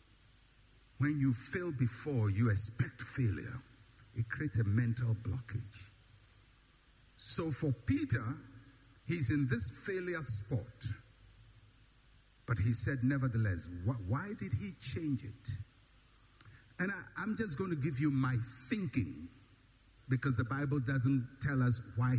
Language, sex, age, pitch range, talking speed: English, male, 60-79, 115-160 Hz, 120 wpm